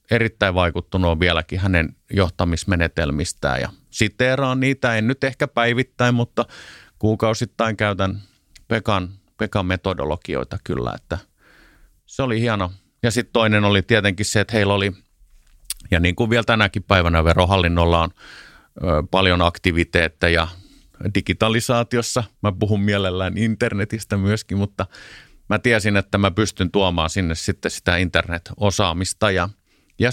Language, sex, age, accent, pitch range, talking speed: Finnish, male, 30-49, native, 95-115 Hz, 125 wpm